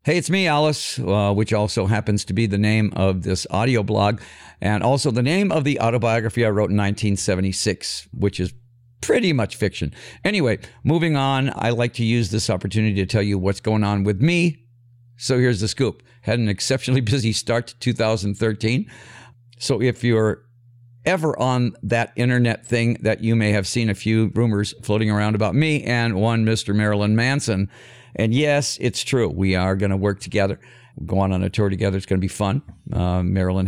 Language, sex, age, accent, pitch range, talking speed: English, male, 50-69, American, 100-120 Hz, 190 wpm